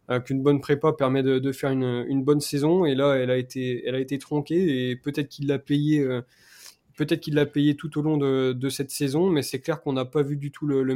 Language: French